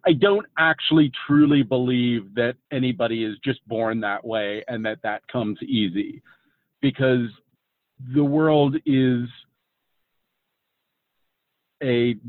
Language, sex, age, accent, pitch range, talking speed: English, male, 50-69, American, 115-140 Hz, 105 wpm